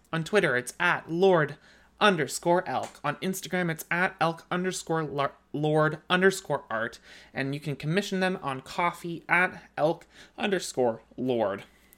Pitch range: 130-165 Hz